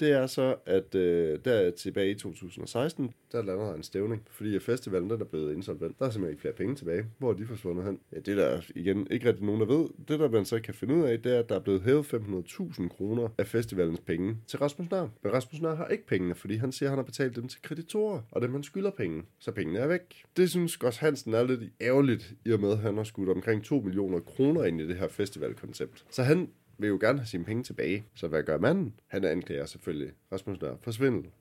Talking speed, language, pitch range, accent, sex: 245 wpm, Danish, 95-135 Hz, native, male